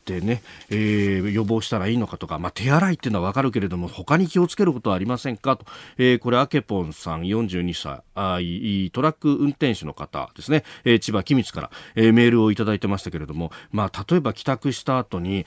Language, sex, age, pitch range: Japanese, male, 40-59, 100-145 Hz